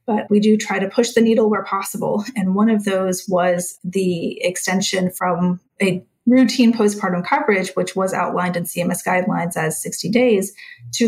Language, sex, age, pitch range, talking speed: English, female, 30-49, 185-220 Hz, 175 wpm